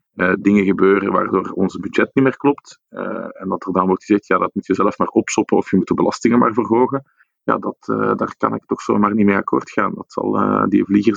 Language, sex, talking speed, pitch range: Dutch, male, 230 wpm, 95-110 Hz